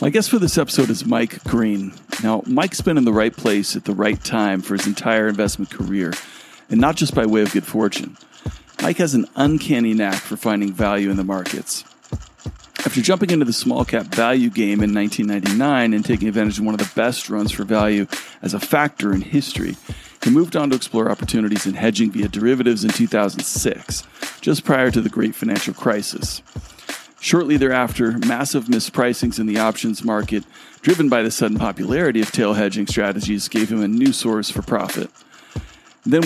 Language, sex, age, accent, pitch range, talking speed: English, male, 40-59, American, 105-125 Hz, 185 wpm